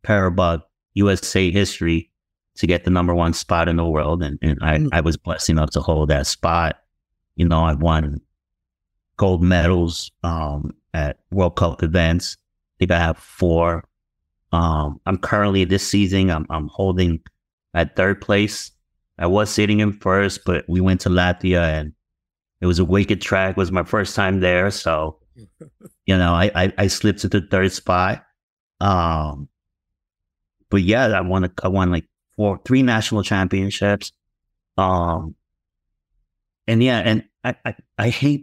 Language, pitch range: English, 80-100 Hz